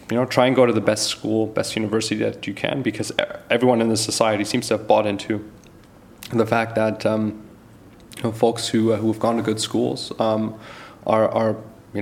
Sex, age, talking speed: male, 20-39, 215 wpm